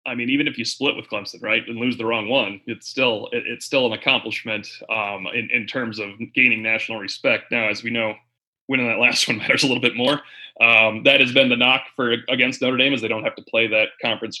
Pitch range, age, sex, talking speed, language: 120-170 Hz, 30-49, male, 245 wpm, English